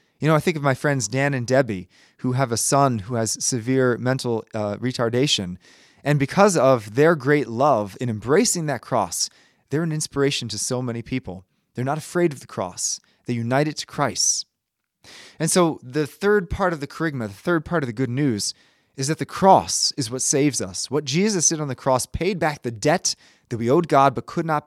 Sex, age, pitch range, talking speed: male, 20-39, 115-155 Hz, 215 wpm